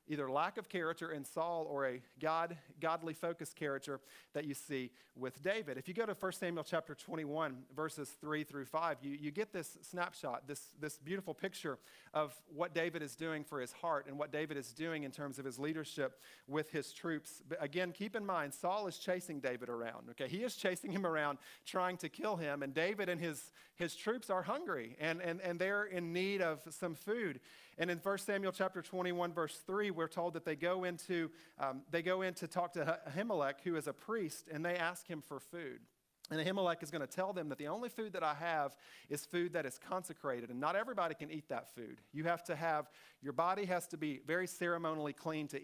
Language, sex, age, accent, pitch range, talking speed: English, male, 40-59, American, 145-180 Hz, 220 wpm